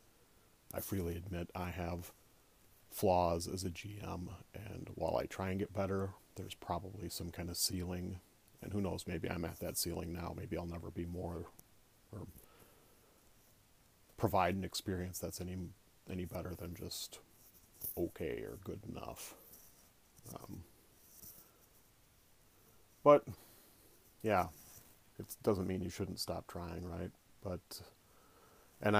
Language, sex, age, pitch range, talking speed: English, male, 40-59, 90-105 Hz, 130 wpm